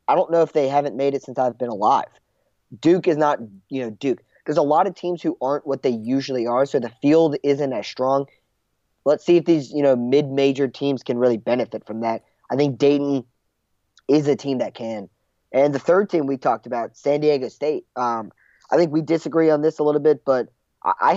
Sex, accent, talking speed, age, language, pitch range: male, American, 225 wpm, 20-39, English, 125-150 Hz